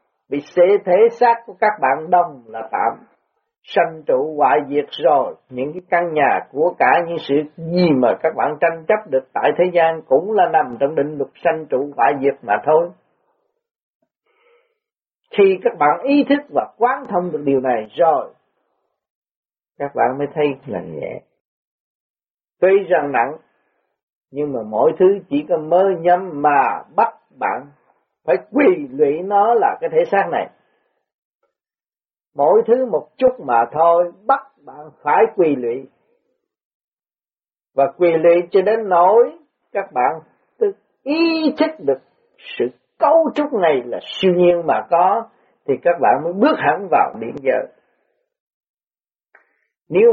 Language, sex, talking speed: Vietnamese, male, 150 wpm